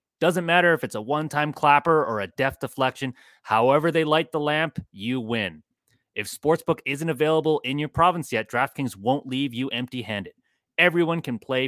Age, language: 30-49, English